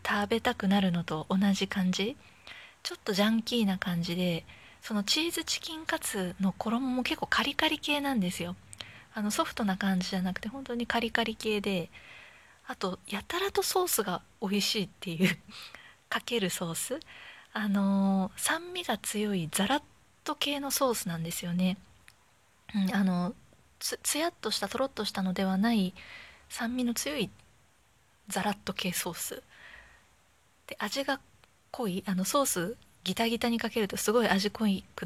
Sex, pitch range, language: female, 190-250 Hz, Japanese